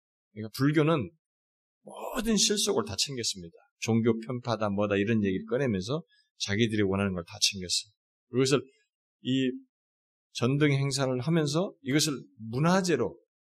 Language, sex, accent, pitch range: Korean, male, native, 100-140 Hz